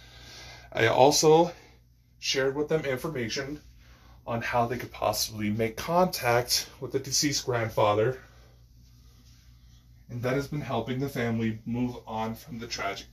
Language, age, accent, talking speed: English, 20-39, American, 135 wpm